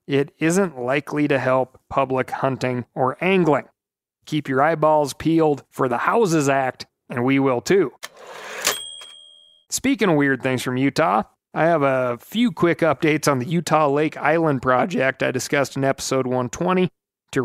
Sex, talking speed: male, 155 wpm